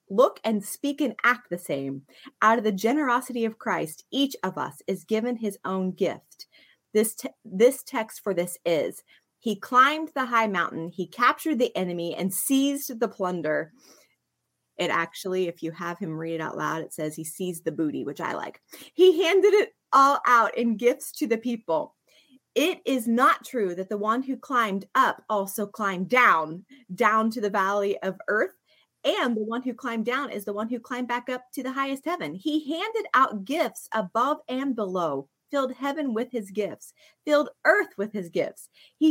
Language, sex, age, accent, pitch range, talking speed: English, female, 30-49, American, 185-260 Hz, 190 wpm